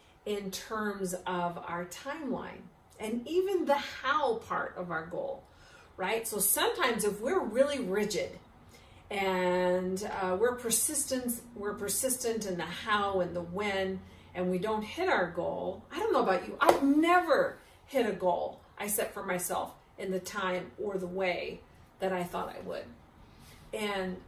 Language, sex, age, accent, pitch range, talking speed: English, female, 40-59, American, 175-215 Hz, 160 wpm